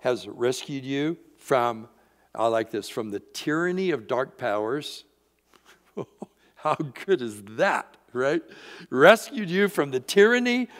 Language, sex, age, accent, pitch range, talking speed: English, male, 60-79, American, 150-215 Hz, 130 wpm